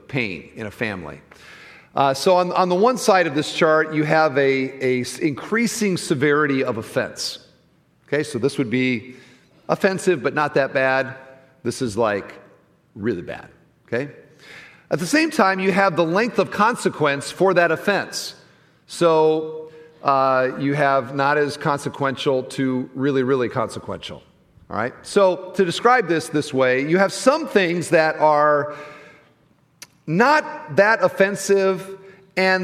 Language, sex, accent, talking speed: English, male, American, 145 wpm